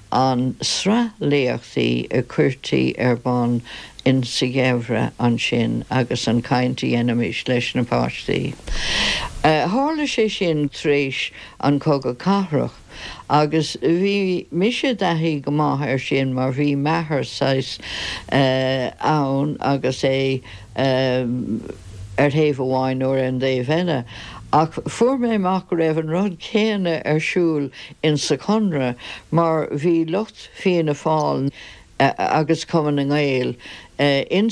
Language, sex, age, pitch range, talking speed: English, female, 60-79, 130-170 Hz, 95 wpm